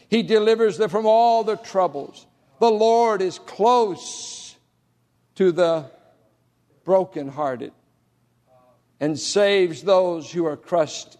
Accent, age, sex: American, 60-79, male